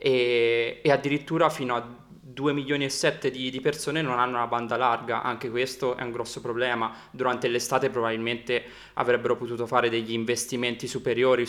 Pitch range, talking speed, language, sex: 120-130 Hz, 155 wpm, Italian, male